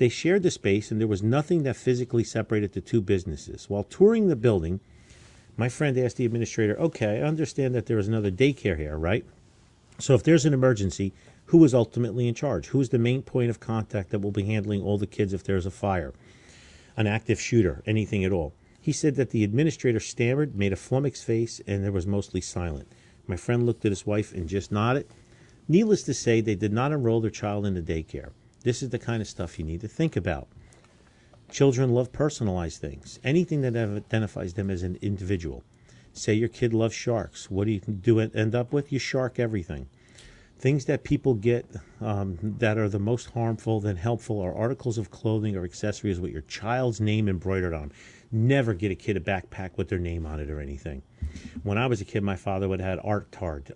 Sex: male